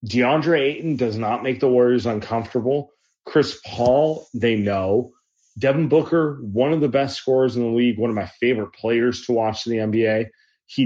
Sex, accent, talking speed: male, American, 180 wpm